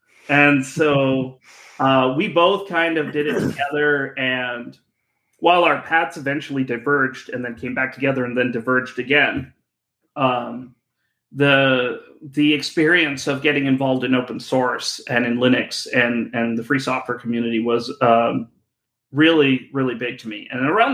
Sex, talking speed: male, 150 wpm